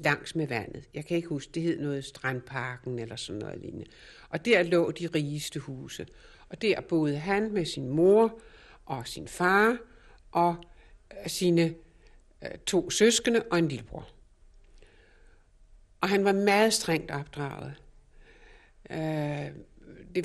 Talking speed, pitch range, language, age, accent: 135 wpm, 145-190 Hz, Danish, 60-79, native